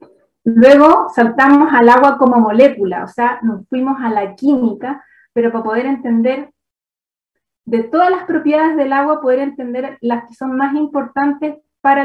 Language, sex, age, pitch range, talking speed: Spanish, female, 30-49, 230-280 Hz, 155 wpm